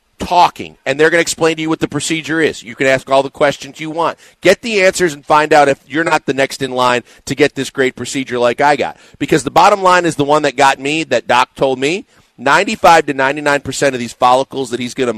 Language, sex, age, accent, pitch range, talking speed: English, male, 40-59, American, 135-165 Hz, 255 wpm